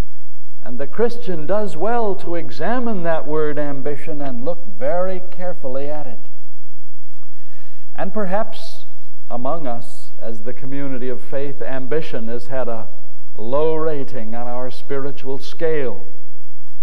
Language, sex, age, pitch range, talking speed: English, male, 60-79, 120-190 Hz, 125 wpm